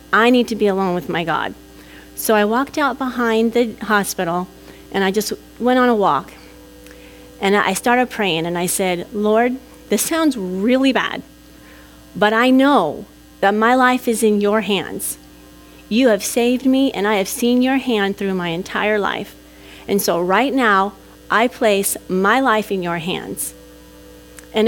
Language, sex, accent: English, female, American